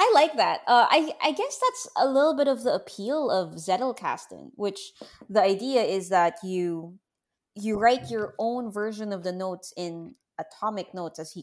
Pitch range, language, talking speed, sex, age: 175-240 Hz, English, 185 wpm, female, 20-39